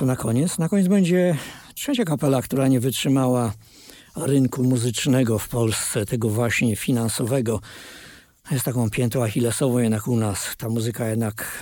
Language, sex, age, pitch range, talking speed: Polish, male, 50-69, 115-140 Hz, 140 wpm